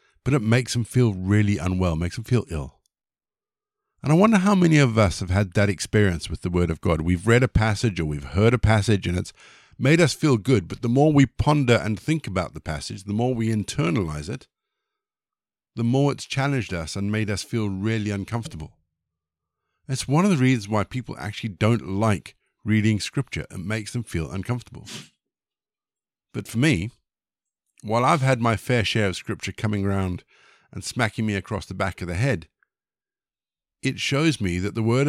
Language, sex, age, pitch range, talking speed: English, male, 50-69, 95-125 Hz, 195 wpm